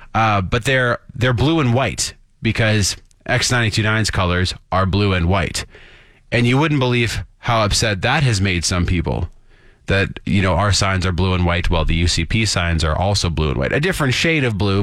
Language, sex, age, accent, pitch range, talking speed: English, male, 30-49, American, 95-130 Hz, 195 wpm